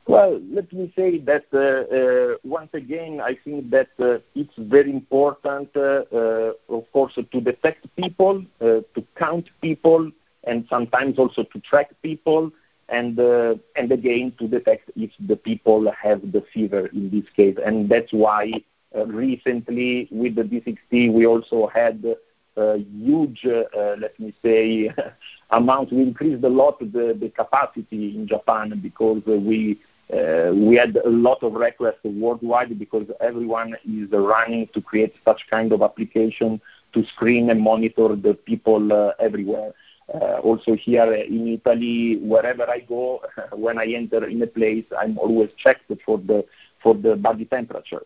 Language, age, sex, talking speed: English, 50-69, male, 160 wpm